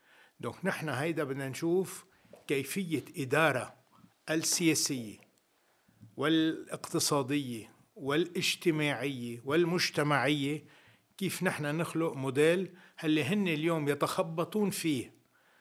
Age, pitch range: 50-69, 130-170 Hz